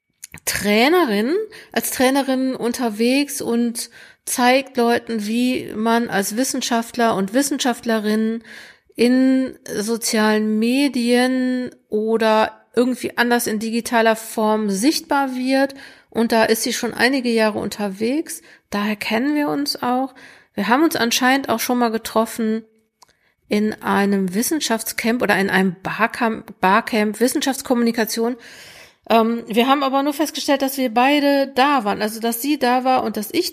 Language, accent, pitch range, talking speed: German, German, 215-255 Hz, 130 wpm